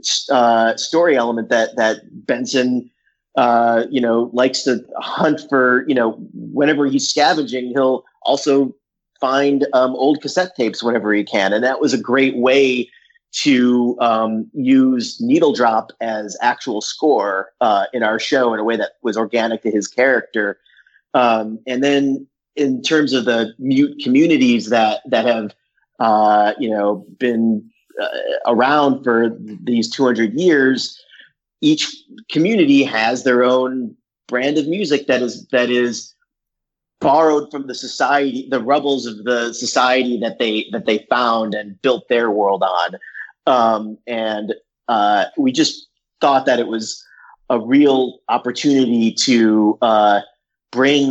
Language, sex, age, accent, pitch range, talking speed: English, male, 30-49, American, 115-140 Hz, 145 wpm